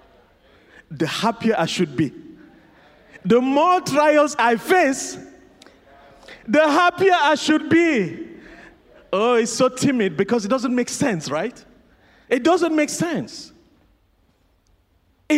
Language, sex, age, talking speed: English, male, 40-59, 115 wpm